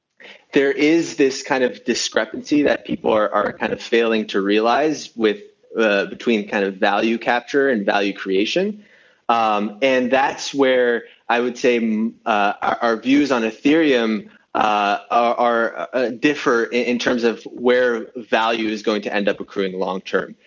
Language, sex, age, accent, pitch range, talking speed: English, male, 20-39, American, 110-140 Hz, 160 wpm